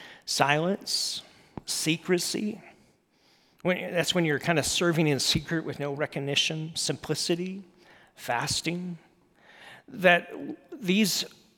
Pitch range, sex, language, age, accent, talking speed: 140-180 Hz, male, English, 40-59, American, 90 wpm